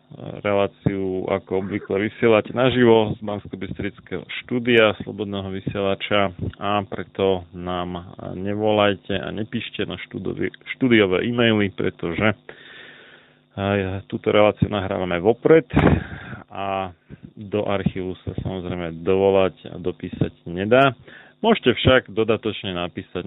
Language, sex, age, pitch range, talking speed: Slovak, male, 30-49, 95-110 Hz, 100 wpm